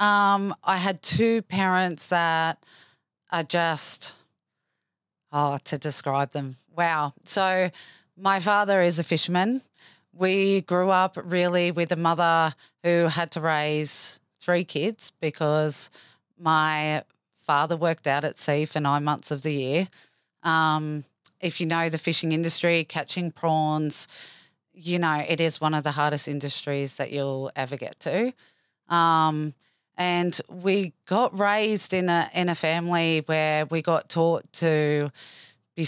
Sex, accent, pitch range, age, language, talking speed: female, Australian, 150-175 Hz, 20-39, English, 140 wpm